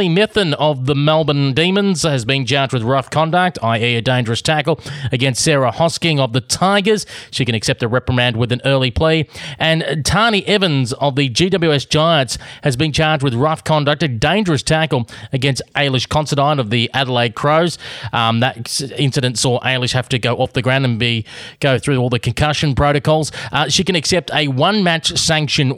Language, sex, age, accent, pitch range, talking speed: English, male, 30-49, Australian, 125-165 Hz, 185 wpm